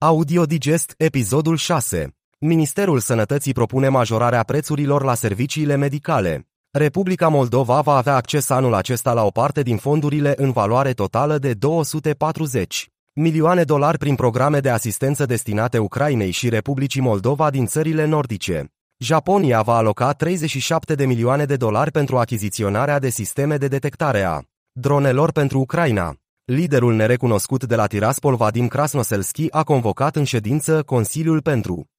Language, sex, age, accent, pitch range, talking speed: Romanian, male, 30-49, native, 120-150 Hz, 140 wpm